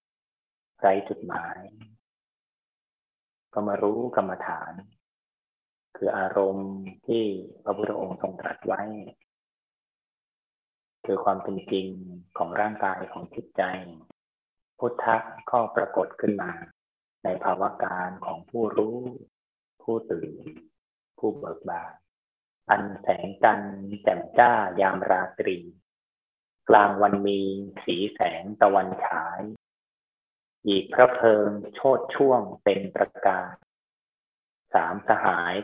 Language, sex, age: Thai, male, 30-49